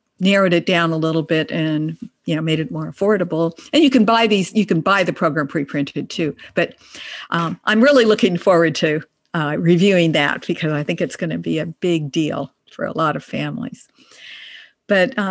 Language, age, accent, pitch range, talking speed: English, 50-69, American, 180-245 Hz, 200 wpm